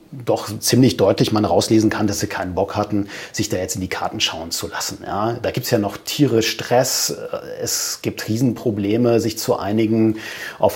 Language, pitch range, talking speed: German, 100-125 Hz, 195 wpm